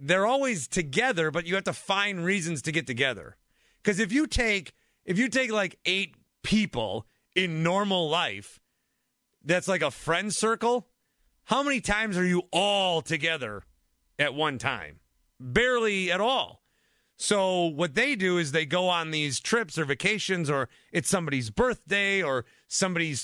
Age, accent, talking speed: 40-59, American, 160 wpm